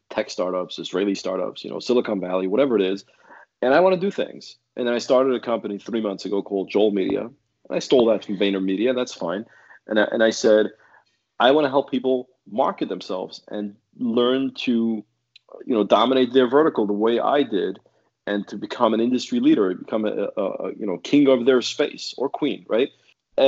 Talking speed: 205 wpm